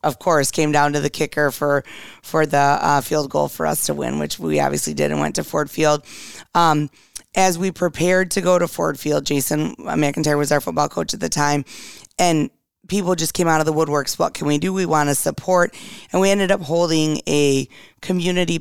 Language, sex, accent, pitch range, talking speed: English, female, American, 145-175 Hz, 215 wpm